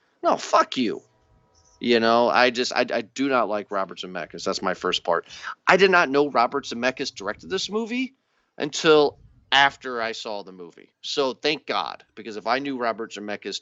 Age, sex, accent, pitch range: 40-59, male, American, 115-160 Hz